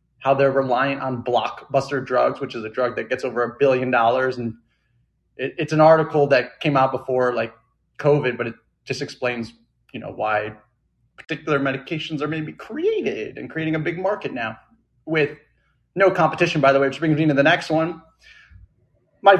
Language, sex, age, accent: English, male, 30-49, American